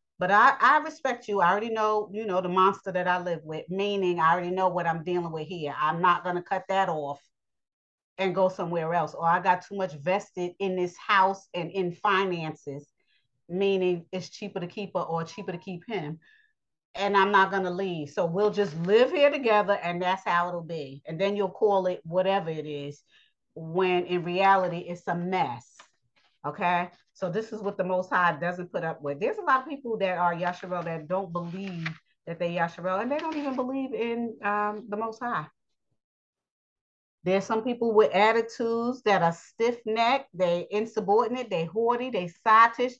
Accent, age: American, 30-49